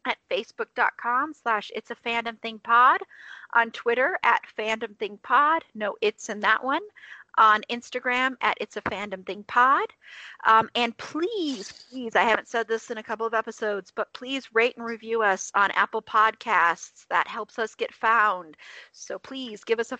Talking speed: 175 wpm